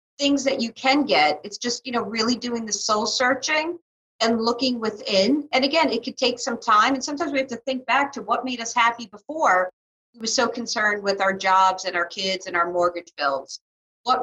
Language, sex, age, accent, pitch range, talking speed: English, female, 50-69, American, 225-285 Hz, 220 wpm